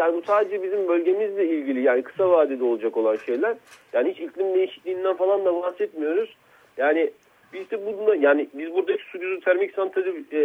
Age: 40-59